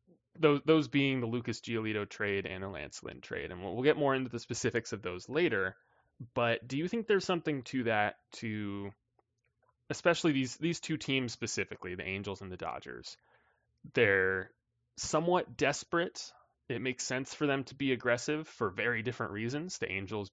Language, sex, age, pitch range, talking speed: English, male, 20-39, 100-135 Hz, 175 wpm